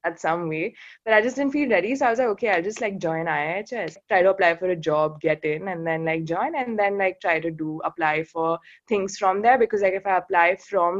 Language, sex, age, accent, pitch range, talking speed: English, female, 20-39, Indian, 165-210 Hz, 260 wpm